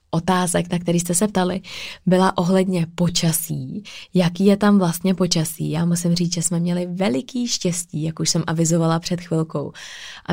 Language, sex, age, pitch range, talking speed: Czech, female, 20-39, 165-185 Hz, 170 wpm